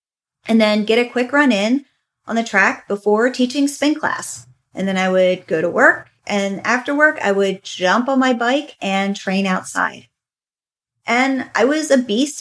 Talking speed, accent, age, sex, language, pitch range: 185 wpm, American, 30-49, female, English, 205-265 Hz